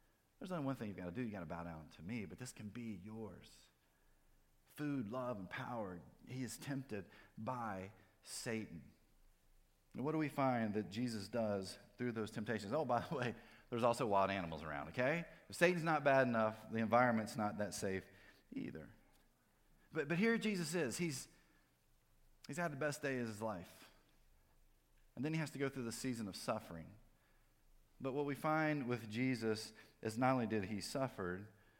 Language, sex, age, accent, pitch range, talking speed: English, male, 30-49, American, 95-130 Hz, 185 wpm